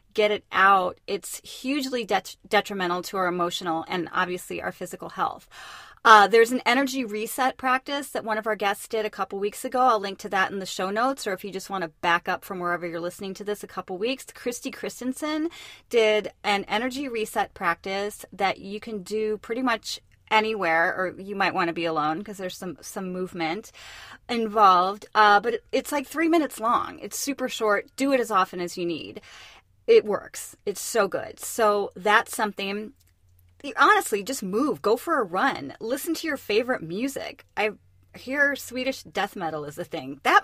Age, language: 30-49, English